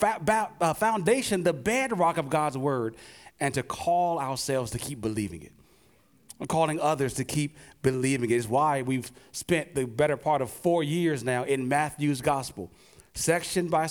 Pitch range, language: 120-165 Hz, English